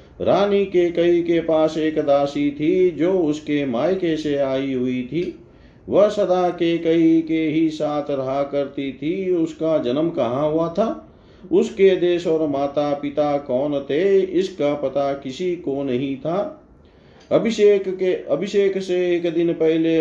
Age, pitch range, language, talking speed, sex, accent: 40-59, 140-185 Hz, Hindi, 150 wpm, male, native